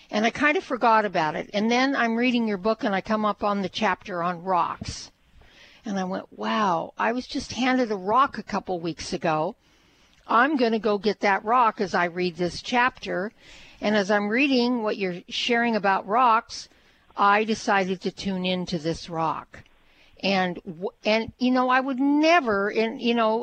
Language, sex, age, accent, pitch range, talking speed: English, female, 60-79, American, 185-235 Hz, 190 wpm